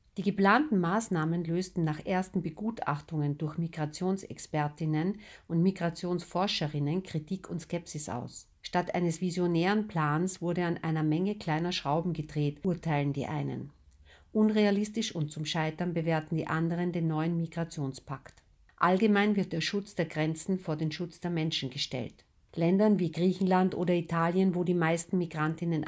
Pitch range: 155-185 Hz